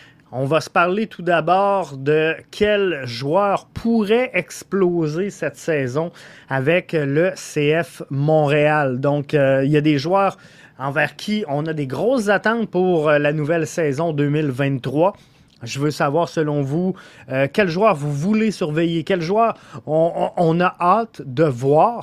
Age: 30-49